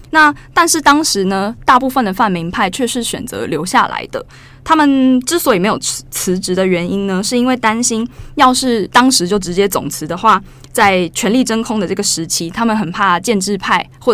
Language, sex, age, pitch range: Chinese, female, 20-39, 180-230 Hz